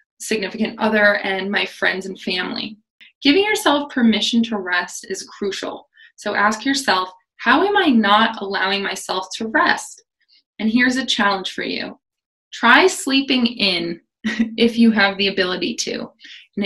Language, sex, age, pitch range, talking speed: English, female, 20-39, 200-240 Hz, 150 wpm